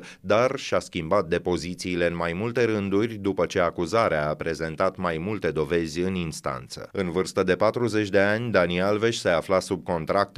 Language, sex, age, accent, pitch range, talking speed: Romanian, male, 30-49, native, 90-110 Hz, 175 wpm